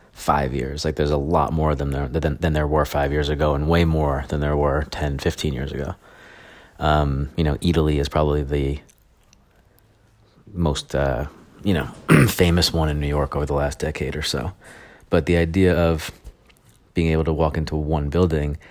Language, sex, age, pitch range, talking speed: English, male, 30-49, 75-80 Hz, 190 wpm